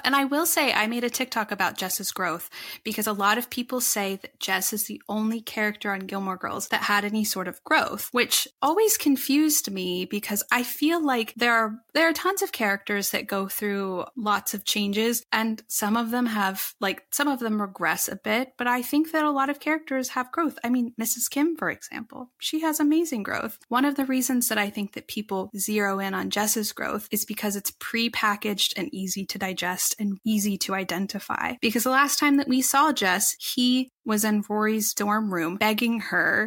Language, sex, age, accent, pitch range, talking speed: English, female, 10-29, American, 200-255 Hz, 210 wpm